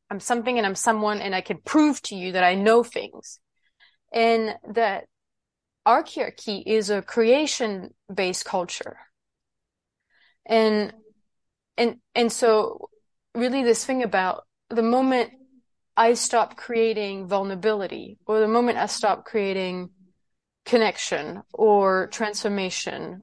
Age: 20-39